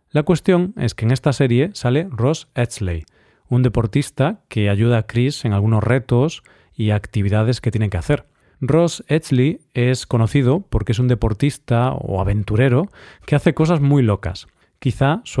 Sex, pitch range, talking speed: male, 110-145 Hz, 165 wpm